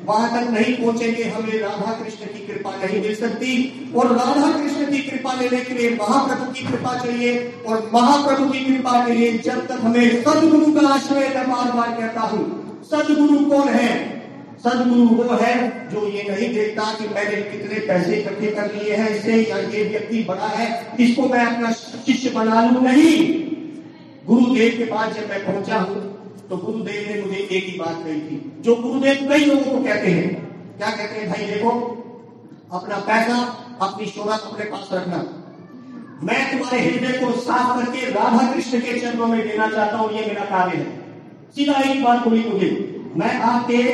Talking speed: 160 wpm